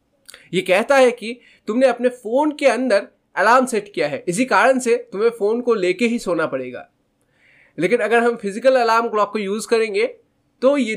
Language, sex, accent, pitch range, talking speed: Hindi, male, native, 185-250 Hz, 180 wpm